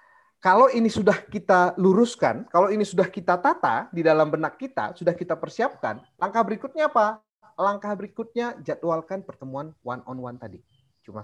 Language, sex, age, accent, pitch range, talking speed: English, male, 30-49, Indonesian, 115-185 Hz, 155 wpm